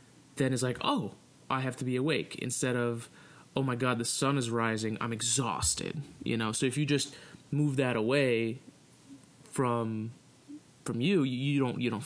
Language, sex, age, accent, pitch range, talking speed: English, male, 20-39, American, 115-140 Hz, 180 wpm